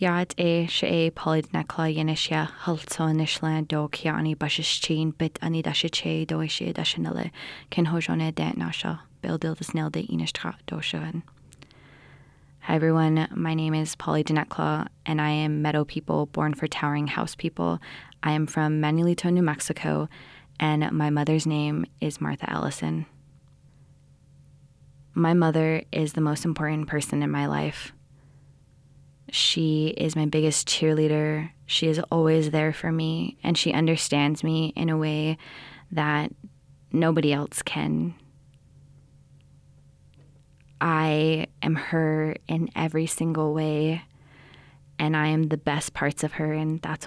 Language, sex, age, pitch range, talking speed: English, female, 20-39, 140-160 Hz, 100 wpm